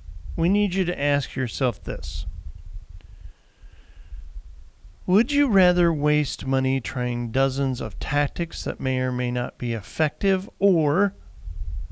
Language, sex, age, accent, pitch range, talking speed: English, male, 40-59, American, 100-150 Hz, 120 wpm